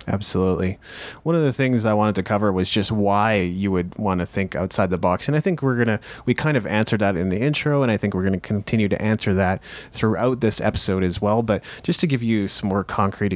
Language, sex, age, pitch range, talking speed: English, male, 30-49, 95-115 Hz, 255 wpm